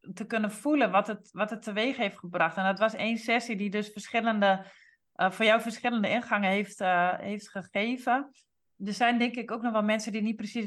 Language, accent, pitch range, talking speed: Dutch, Dutch, 190-220 Hz, 215 wpm